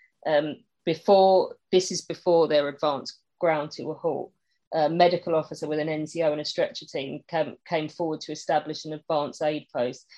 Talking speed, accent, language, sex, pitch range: 190 wpm, British, English, female, 150-185 Hz